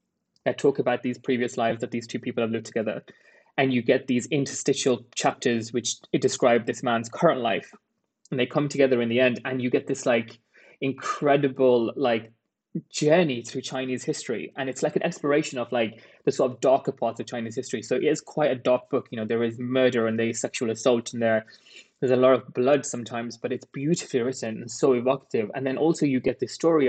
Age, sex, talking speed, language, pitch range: 20-39, male, 215 wpm, English, 115-140 Hz